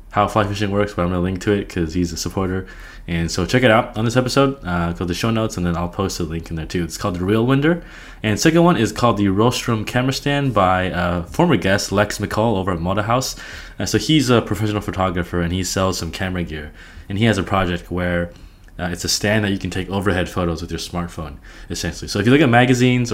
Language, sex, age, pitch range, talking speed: English, male, 20-39, 85-115 Hz, 260 wpm